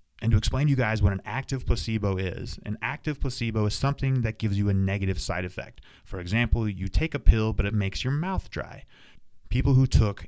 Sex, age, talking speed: male, 30-49, 220 wpm